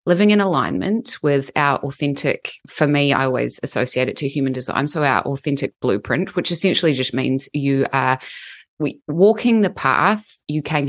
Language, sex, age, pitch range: English, female, 20-39, 140-165 Hz